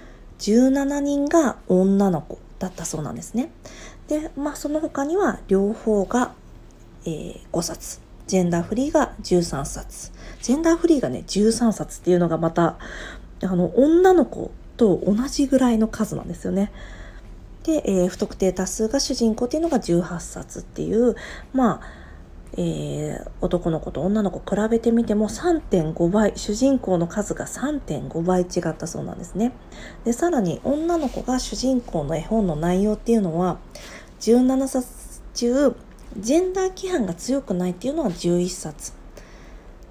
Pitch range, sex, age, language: 180-260 Hz, female, 40-59, Japanese